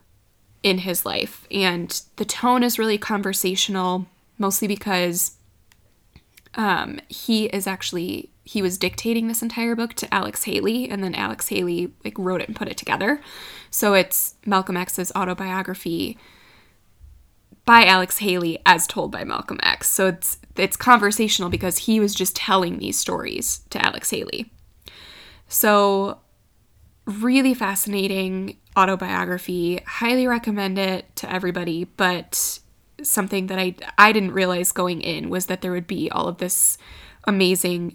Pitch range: 180-205 Hz